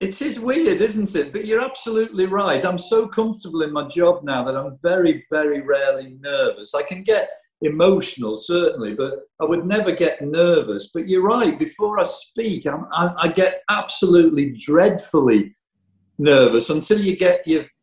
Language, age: English, 50-69